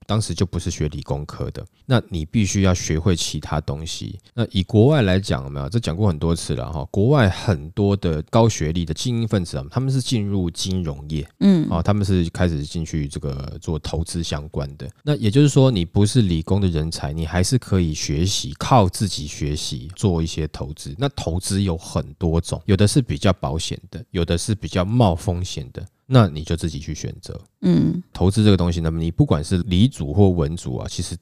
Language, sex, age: Chinese, male, 20-39